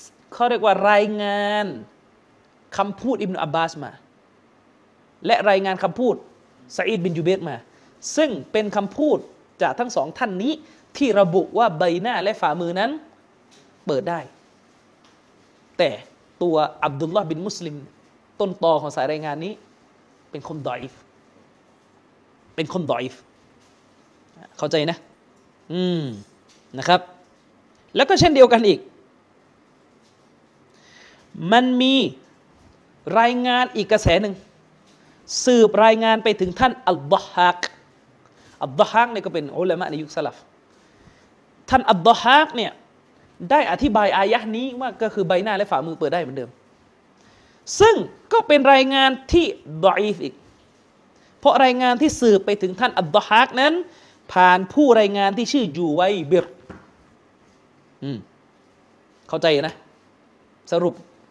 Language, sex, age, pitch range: Thai, male, 30-49, 175-245 Hz